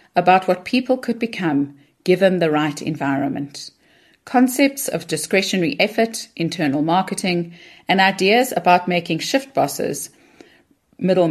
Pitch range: 155-210 Hz